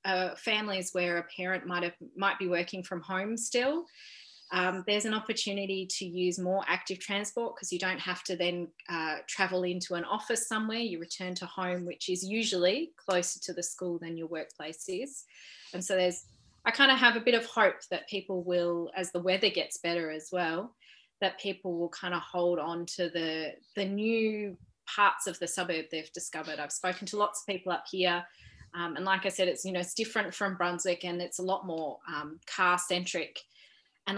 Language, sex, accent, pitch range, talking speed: English, female, Australian, 170-195 Hz, 205 wpm